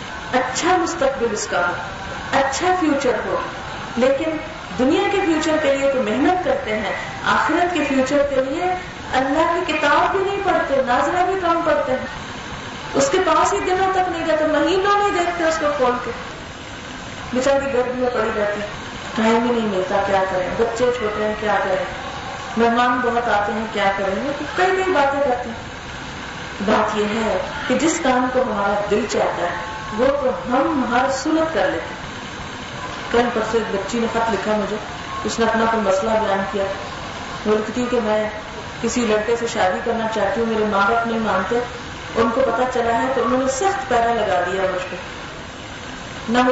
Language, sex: Urdu, female